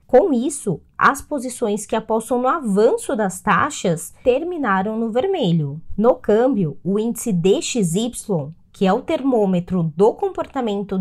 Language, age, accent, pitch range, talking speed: Portuguese, 20-39, Brazilian, 195-285 Hz, 130 wpm